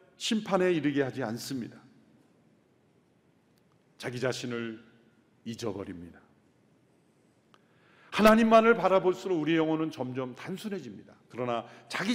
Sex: male